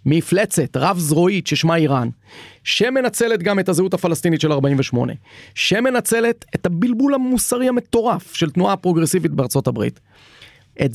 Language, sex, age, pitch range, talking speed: Hebrew, male, 40-59, 130-185 Hz, 125 wpm